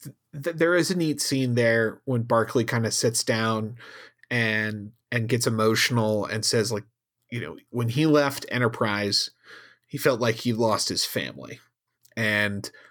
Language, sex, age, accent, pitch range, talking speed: English, male, 30-49, American, 115-140 Hz, 155 wpm